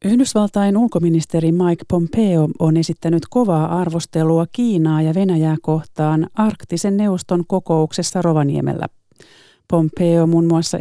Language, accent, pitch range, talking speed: Finnish, native, 165-190 Hz, 105 wpm